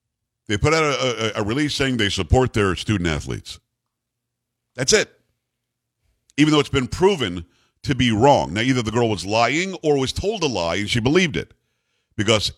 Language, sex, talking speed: English, male, 185 wpm